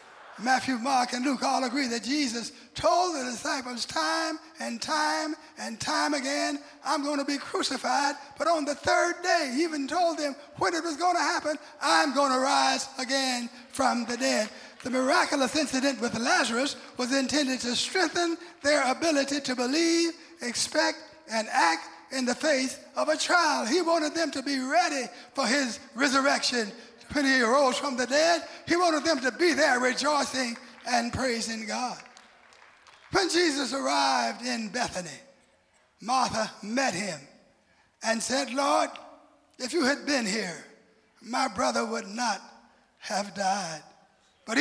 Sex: male